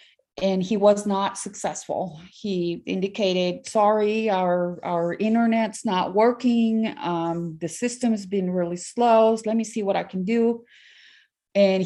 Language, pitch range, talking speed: English, 180-225 Hz, 145 wpm